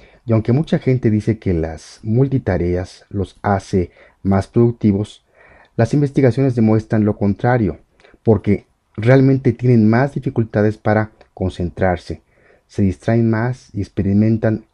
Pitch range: 95-120 Hz